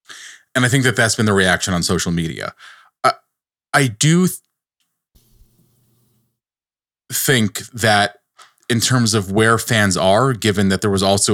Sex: male